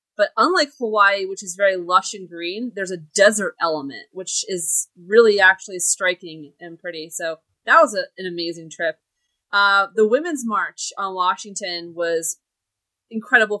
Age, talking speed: 30-49, 150 wpm